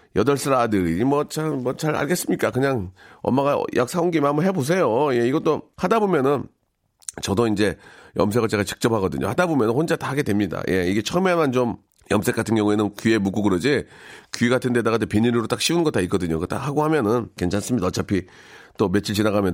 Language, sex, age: Korean, male, 40-59